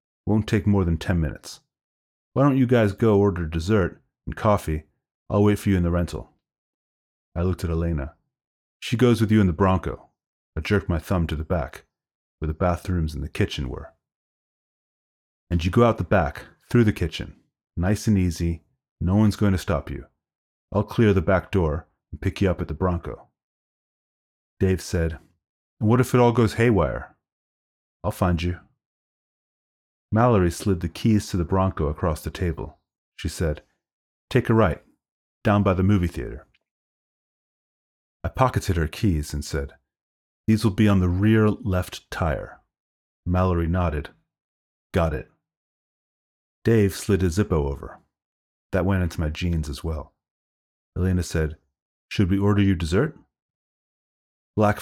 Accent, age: American, 30-49